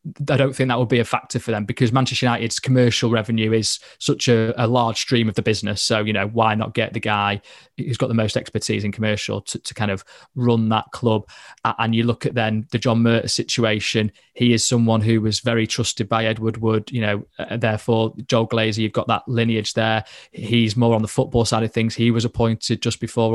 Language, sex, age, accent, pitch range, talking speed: English, male, 20-39, British, 115-125 Hz, 225 wpm